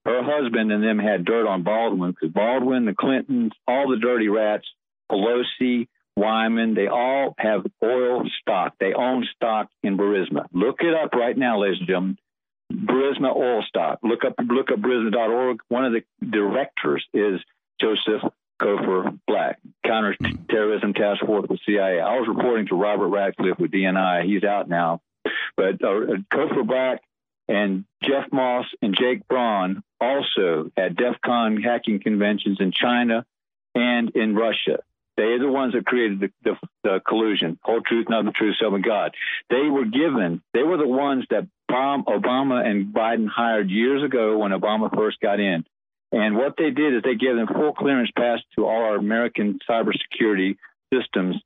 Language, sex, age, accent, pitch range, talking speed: English, male, 50-69, American, 105-125 Hz, 165 wpm